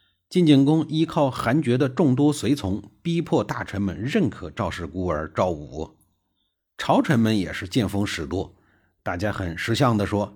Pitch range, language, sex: 90-150 Hz, Chinese, male